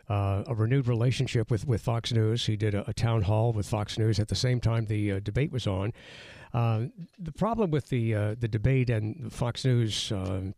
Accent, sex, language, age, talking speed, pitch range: American, male, English, 60-79, 215 wpm, 110-140 Hz